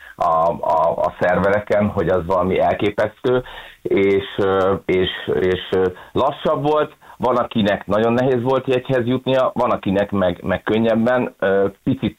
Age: 30-49